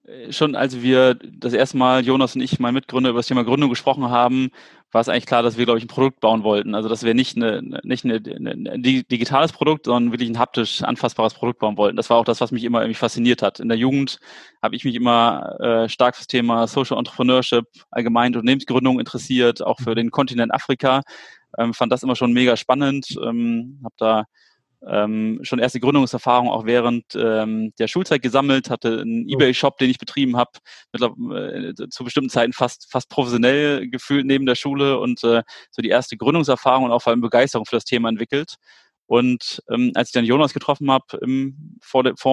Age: 20-39